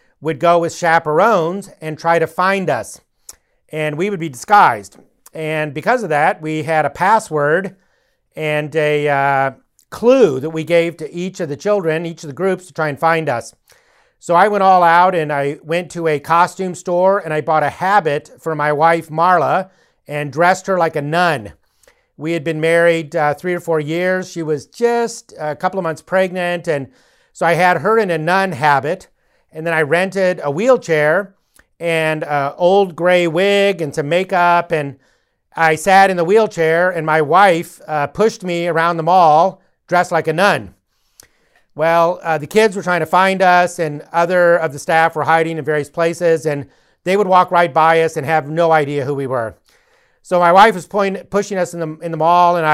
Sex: male